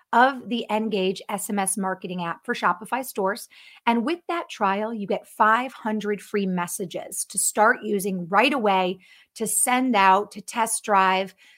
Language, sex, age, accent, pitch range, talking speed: English, female, 30-49, American, 195-255 Hz, 150 wpm